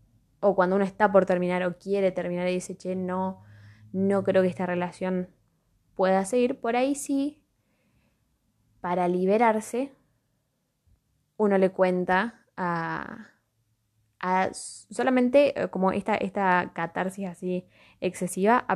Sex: female